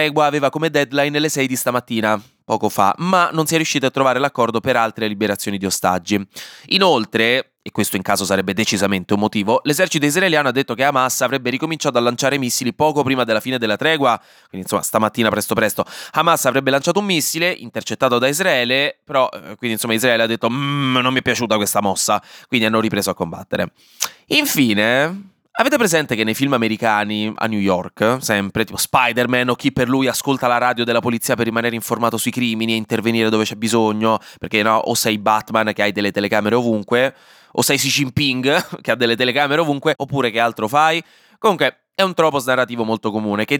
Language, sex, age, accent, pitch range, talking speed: Italian, male, 20-39, native, 110-150 Hz, 195 wpm